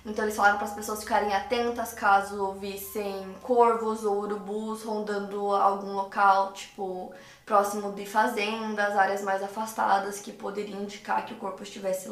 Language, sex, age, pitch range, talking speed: Portuguese, female, 20-39, 205-240 Hz, 150 wpm